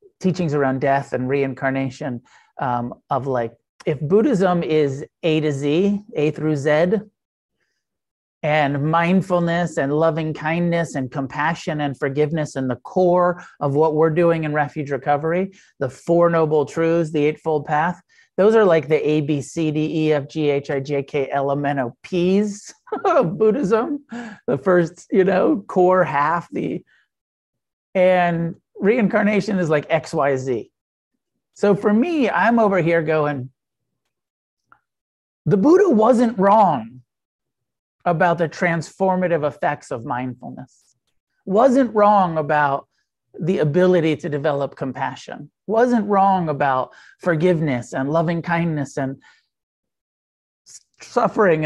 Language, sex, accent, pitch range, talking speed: English, male, American, 145-185 Hz, 130 wpm